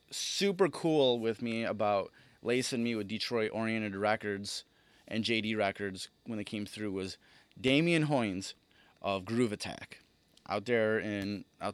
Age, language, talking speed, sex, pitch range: 30-49, English, 145 wpm, male, 100-125 Hz